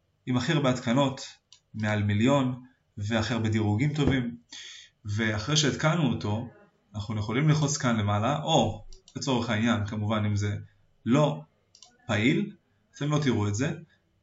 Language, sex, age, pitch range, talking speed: Hebrew, male, 20-39, 110-130 Hz, 130 wpm